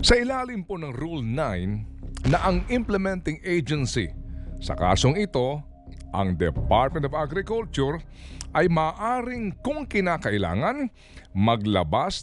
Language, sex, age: Filipino, male, 50-69